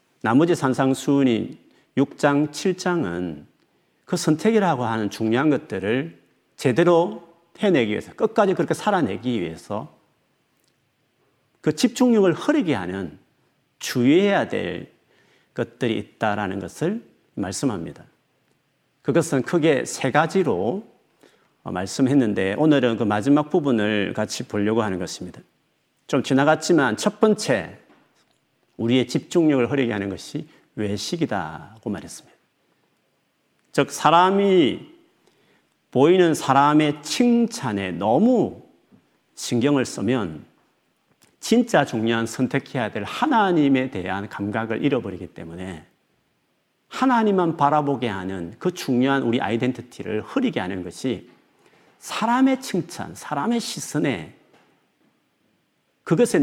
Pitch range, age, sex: 110-175 Hz, 40-59, male